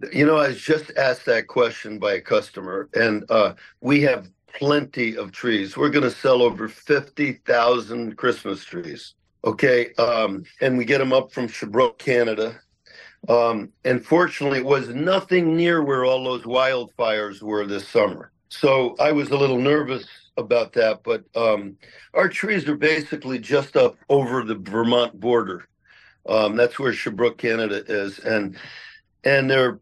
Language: English